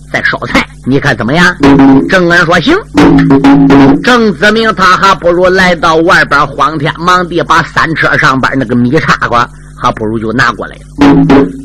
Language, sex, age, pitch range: Chinese, male, 50-69, 145-235 Hz